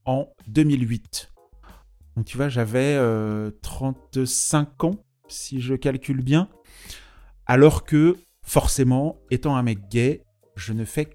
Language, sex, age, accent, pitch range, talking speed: French, male, 30-49, French, 115-145 Hz, 125 wpm